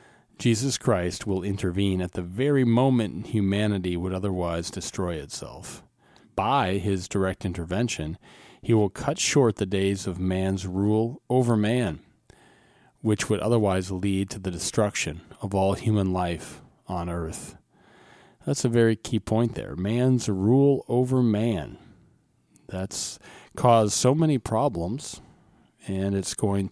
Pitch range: 90-115 Hz